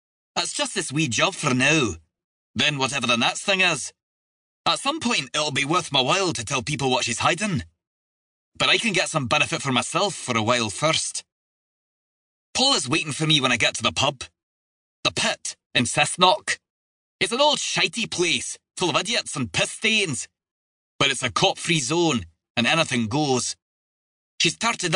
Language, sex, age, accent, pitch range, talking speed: English, male, 20-39, British, 115-180 Hz, 180 wpm